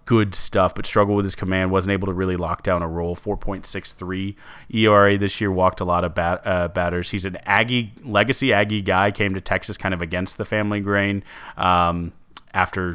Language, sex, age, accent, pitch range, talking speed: English, male, 30-49, American, 90-105 Hz, 200 wpm